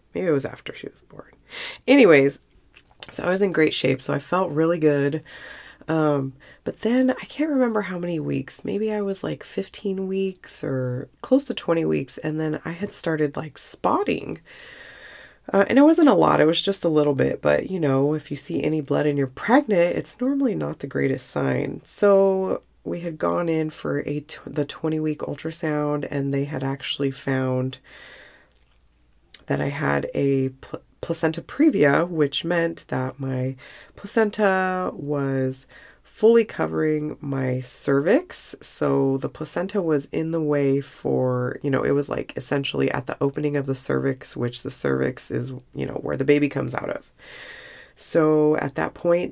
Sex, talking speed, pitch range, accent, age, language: female, 170 wpm, 135-170 Hz, American, 30-49, English